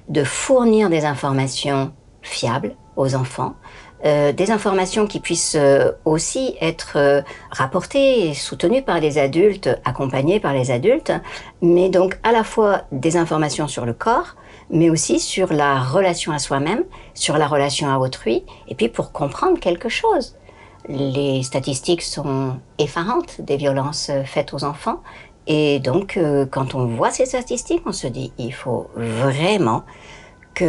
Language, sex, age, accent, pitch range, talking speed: French, male, 60-79, French, 135-175 Hz, 155 wpm